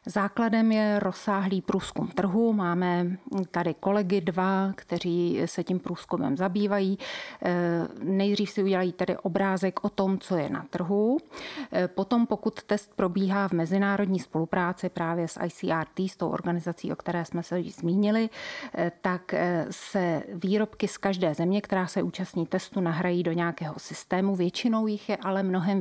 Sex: female